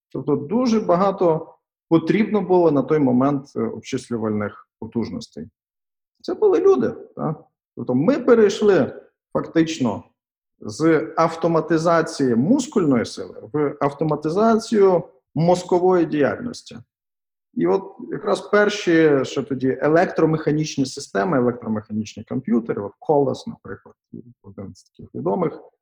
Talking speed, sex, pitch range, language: 95 wpm, male, 120-180 Hz, English